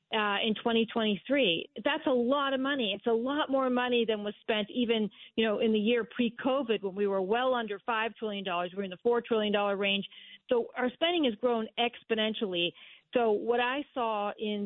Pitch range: 205-245 Hz